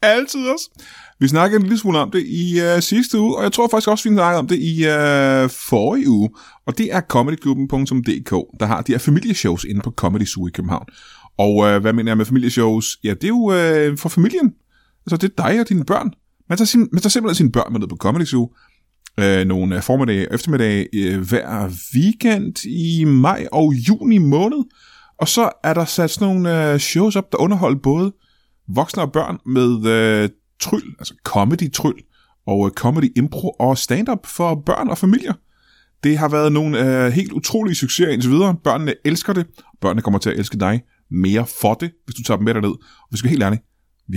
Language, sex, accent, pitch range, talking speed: Danish, male, native, 110-180 Hz, 210 wpm